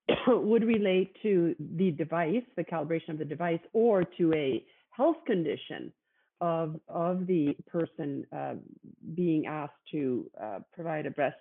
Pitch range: 165-220 Hz